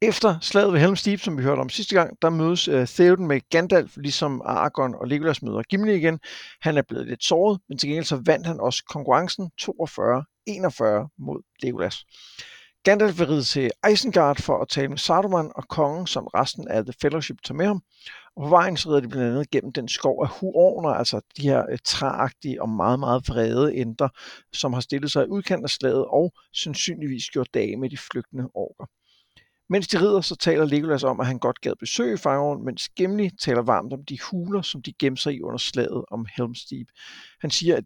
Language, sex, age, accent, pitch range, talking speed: Danish, male, 60-79, native, 130-175 Hz, 205 wpm